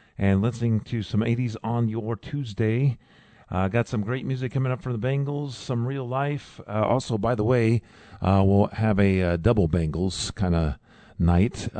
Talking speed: 185 wpm